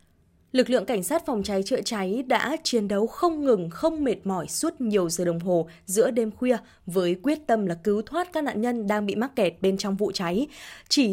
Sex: female